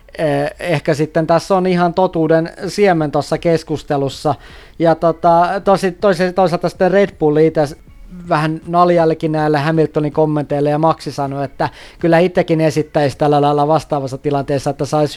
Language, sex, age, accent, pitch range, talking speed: Finnish, male, 20-39, native, 150-180 Hz, 135 wpm